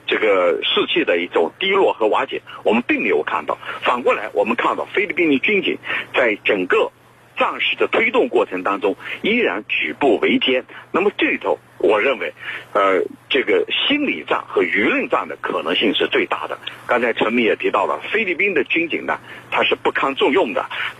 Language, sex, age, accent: Chinese, male, 50-69, native